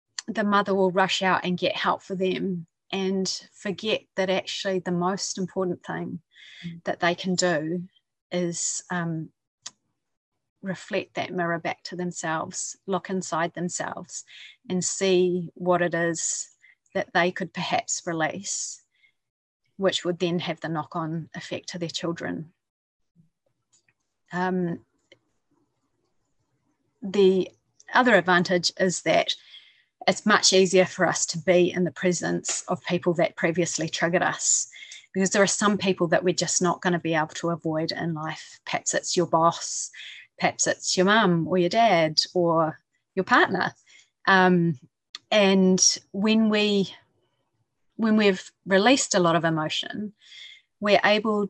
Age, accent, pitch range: 30-49, Australian, 170-195 Hz